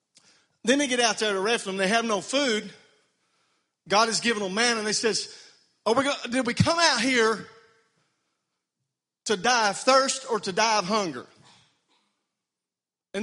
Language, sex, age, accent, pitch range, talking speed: English, male, 40-59, American, 180-240 Hz, 170 wpm